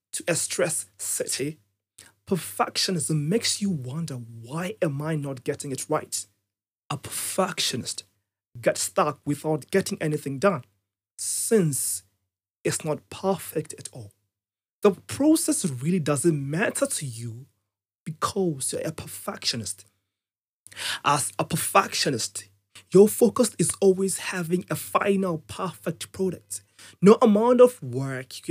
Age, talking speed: 30-49, 120 wpm